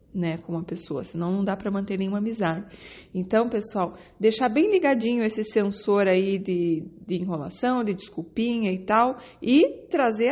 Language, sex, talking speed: Portuguese, female, 165 wpm